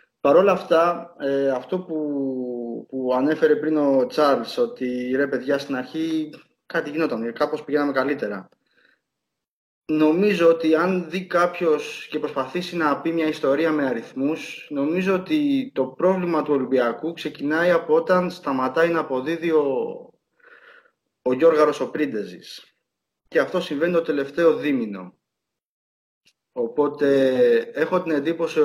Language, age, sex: Greek, 20-39, male